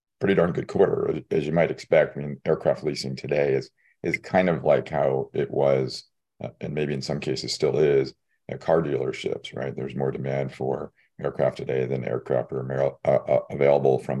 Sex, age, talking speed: male, 40-59, 200 wpm